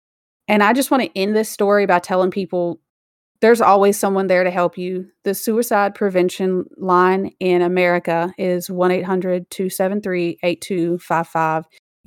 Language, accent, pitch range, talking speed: English, American, 175-195 Hz, 130 wpm